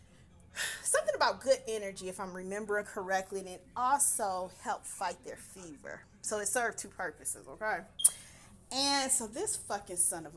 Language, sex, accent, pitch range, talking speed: English, female, American, 185-290 Hz, 155 wpm